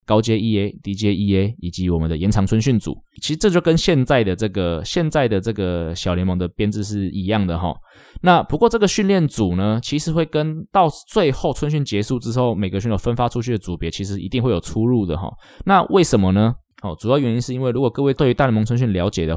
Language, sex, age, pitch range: Chinese, male, 20-39, 95-135 Hz